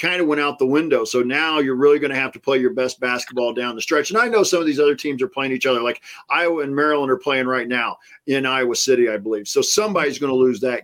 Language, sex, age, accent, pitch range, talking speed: English, male, 40-59, American, 120-145 Hz, 290 wpm